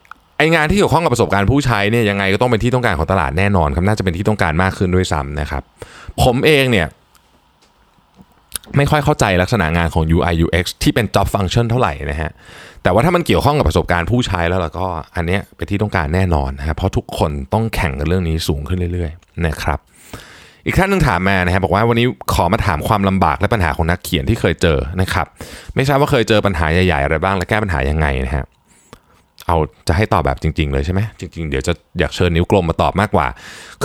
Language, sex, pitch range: Thai, male, 85-110 Hz